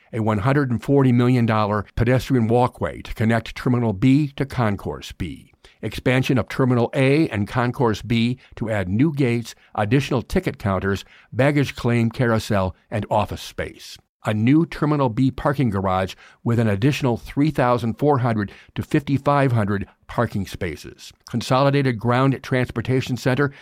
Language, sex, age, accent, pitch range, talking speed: English, male, 50-69, American, 110-135 Hz, 125 wpm